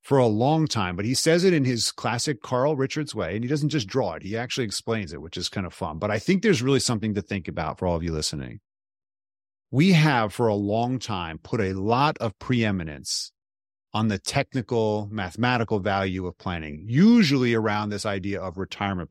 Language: English